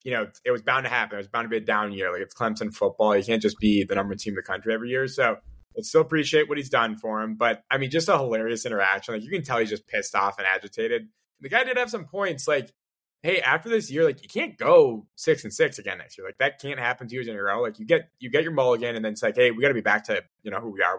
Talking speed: 320 wpm